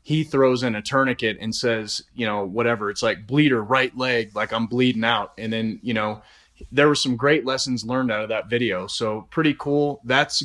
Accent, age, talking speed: American, 30-49, 210 wpm